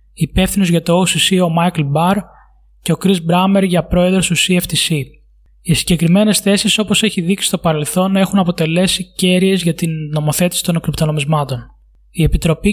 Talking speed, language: 155 wpm, Greek